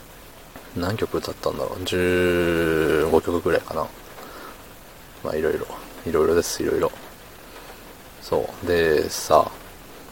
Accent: native